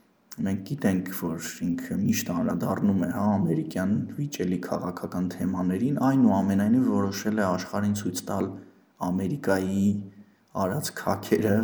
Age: 20-39